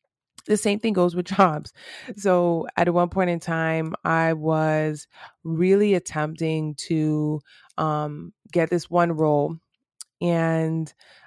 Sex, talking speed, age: female, 120 wpm, 20-39